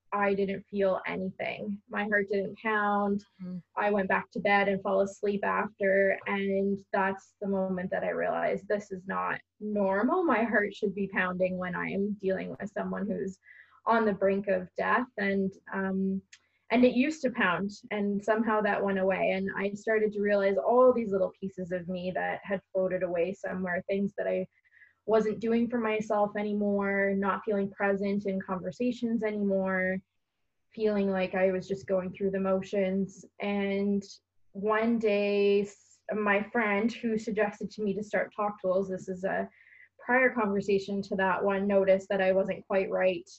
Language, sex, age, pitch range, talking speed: English, female, 20-39, 190-210 Hz, 170 wpm